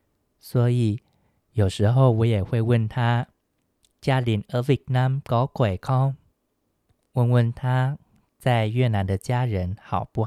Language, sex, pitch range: Chinese, male, 105-130 Hz